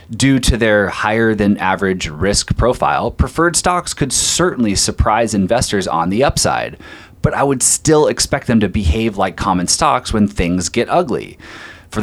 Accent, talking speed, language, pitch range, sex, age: American, 165 wpm, English, 95-120 Hz, male, 30-49